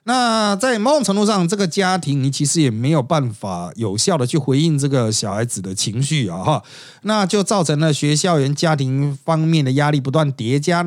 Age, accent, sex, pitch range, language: 30-49, native, male, 130-185 Hz, Chinese